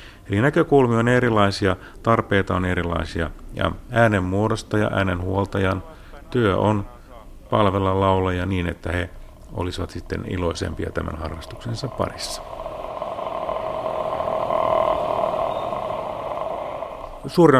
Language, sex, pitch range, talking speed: Finnish, male, 85-110 Hz, 90 wpm